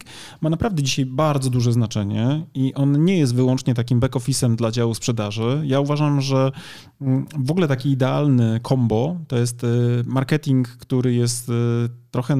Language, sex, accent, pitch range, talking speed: Polish, male, native, 120-135 Hz, 145 wpm